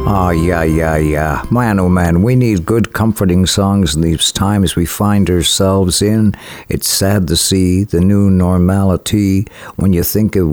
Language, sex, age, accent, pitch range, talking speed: English, male, 60-79, American, 90-120 Hz, 175 wpm